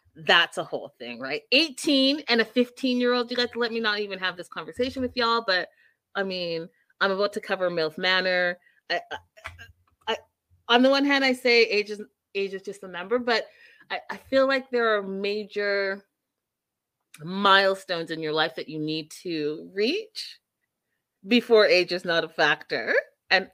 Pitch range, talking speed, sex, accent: 175-245 Hz, 180 wpm, female, American